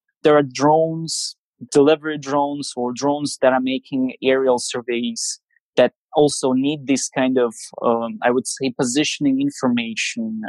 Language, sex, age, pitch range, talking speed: English, male, 20-39, 130-155 Hz, 135 wpm